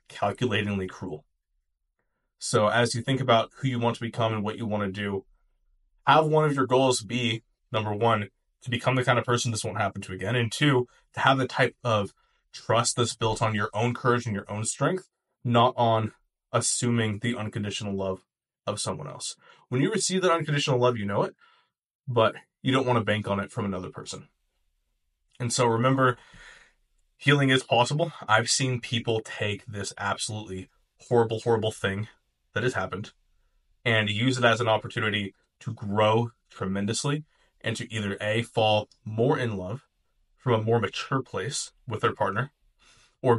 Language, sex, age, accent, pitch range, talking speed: English, male, 20-39, American, 105-125 Hz, 175 wpm